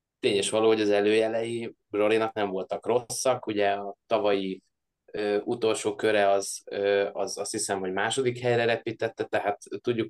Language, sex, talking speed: Hungarian, male, 155 wpm